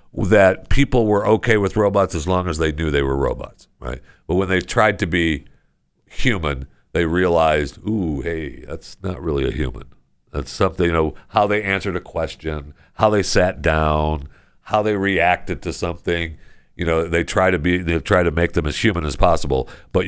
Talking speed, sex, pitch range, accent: 195 wpm, male, 80-105 Hz, American